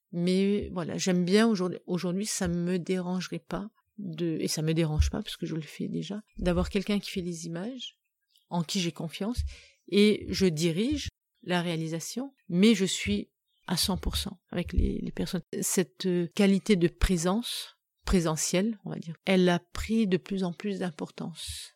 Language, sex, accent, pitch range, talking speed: French, female, French, 175-205 Hz, 170 wpm